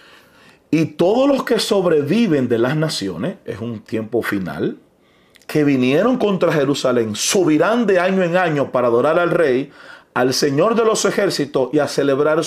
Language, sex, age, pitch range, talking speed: Spanish, male, 40-59, 110-170 Hz, 160 wpm